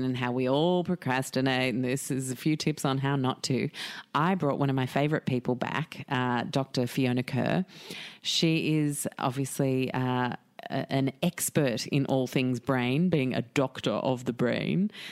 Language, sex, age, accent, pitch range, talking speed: English, female, 30-49, Australian, 135-170 Hz, 165 wpm